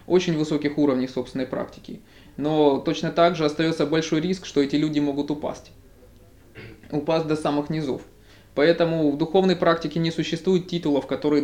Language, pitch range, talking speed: Russian, 135-160 Hz, 150 wpm